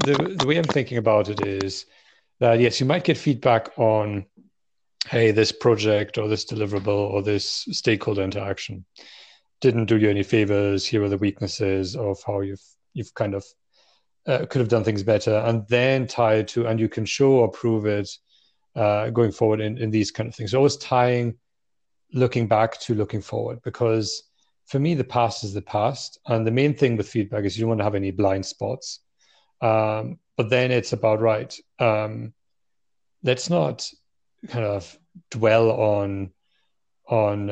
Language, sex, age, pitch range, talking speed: English, male, 40-59, 105-120 Hz, 180 wpm